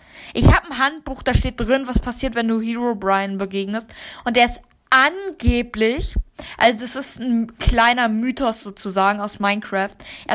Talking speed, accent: 160 wpm, German